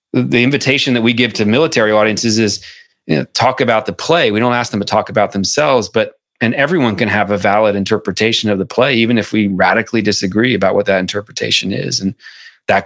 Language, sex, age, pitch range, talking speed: English, male, 30-49, 90-105 Hz, 205 wpm